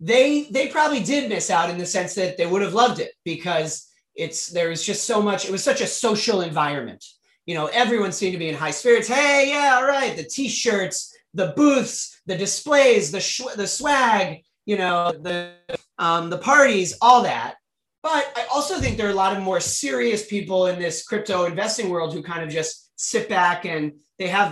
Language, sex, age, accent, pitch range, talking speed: English, male, 30-49, American, 175-240 Hz, 210 wpm